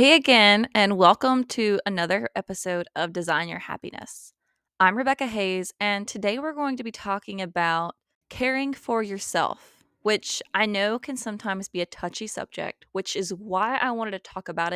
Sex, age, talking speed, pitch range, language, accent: female, 20-39, 170 wpm, 180-230 Hz, English, American